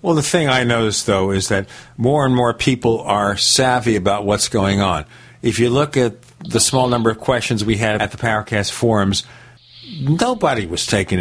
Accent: American